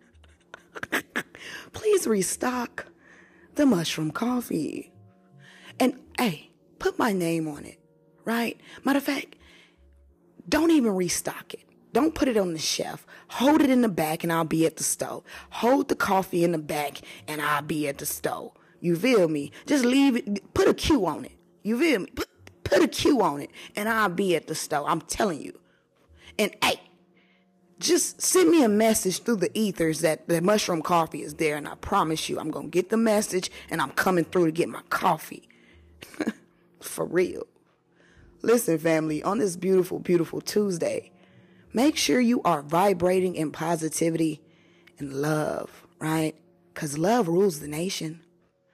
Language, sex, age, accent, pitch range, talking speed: English, female, 20-39, American, 160-230 Hz, 165 wpm